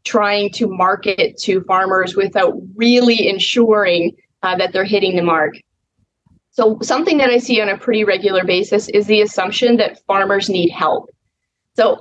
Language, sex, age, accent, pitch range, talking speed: English, female, 20-39, American, 185-225 Hz, 160 wpm